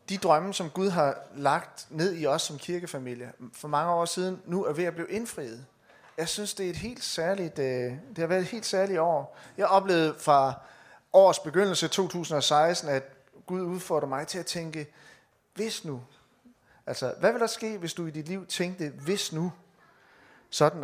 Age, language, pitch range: 30-49, Danish, 145-190 Hz